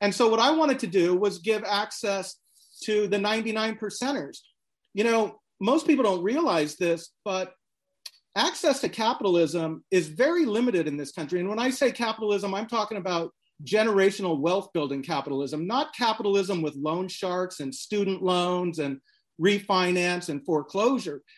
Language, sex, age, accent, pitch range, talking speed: English, male, 40-59, American, 170-230 Hz, 155 wpm